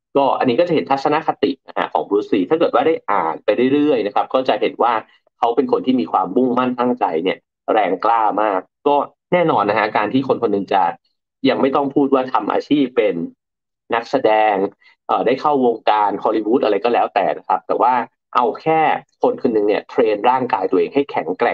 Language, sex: English, male